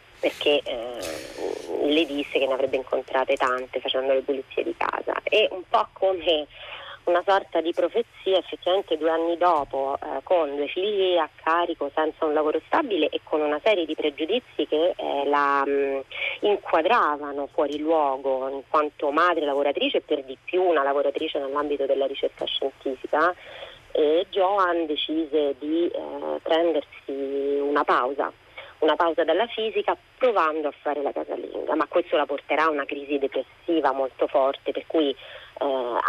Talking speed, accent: 155 wpm, native